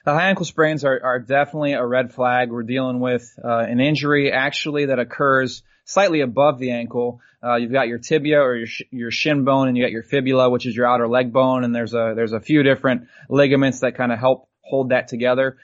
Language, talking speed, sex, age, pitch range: English, 230 wpm, male, 20-39, 125-140 Hz